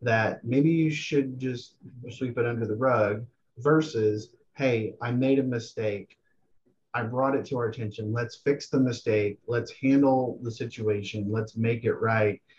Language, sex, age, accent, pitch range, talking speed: English, male, 30-49, American, 110-130 Hz, 160 wpm